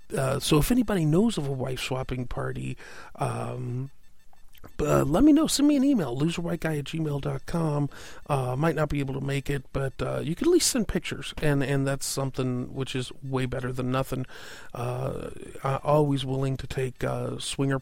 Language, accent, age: English, American, 40-59